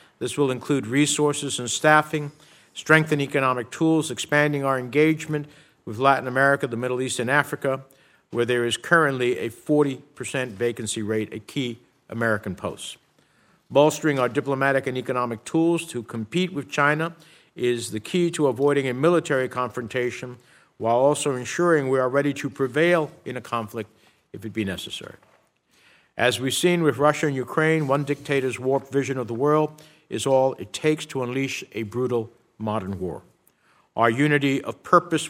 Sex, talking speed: male, 160 wpm